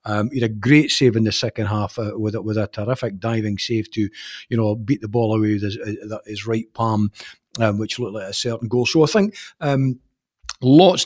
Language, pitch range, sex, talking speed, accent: English, 110-135 Hz, male, 230 wpm, British